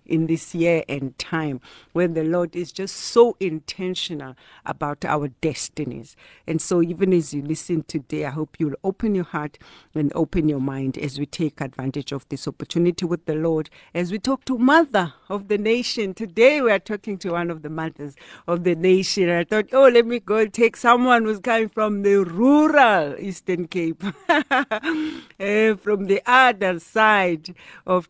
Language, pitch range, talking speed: English, 155-195 Hz, 175 wpm